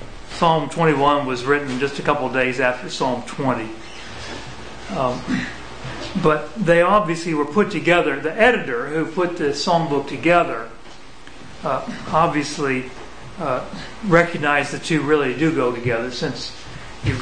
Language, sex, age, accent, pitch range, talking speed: English, male, 40-59, American, 145-185 Hz, 135 wpm